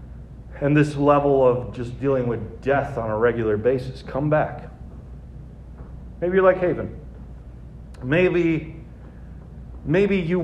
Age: 40-59